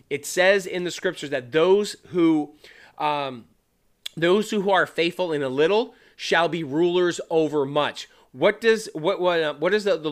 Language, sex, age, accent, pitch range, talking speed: English, male, 30-49, American, 155-200 Hz, 180 wpm